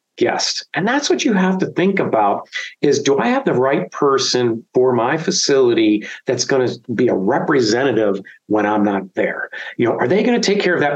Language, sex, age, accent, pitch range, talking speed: English, male, 50-69, American, 145-200 Hz, 215 wpm